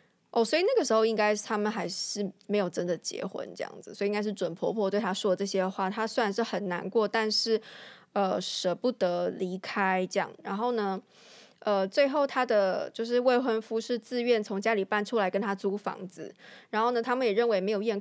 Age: 20-39